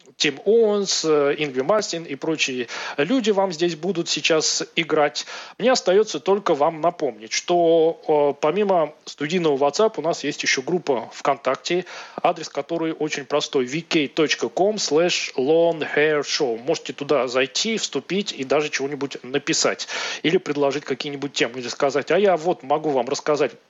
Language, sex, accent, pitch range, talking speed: Russian, male, native, 140-175 Hz, 135 wpm